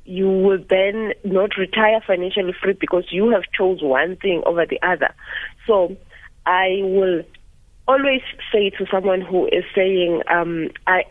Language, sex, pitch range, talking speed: English, female, 165-200 Hz, 150 wpm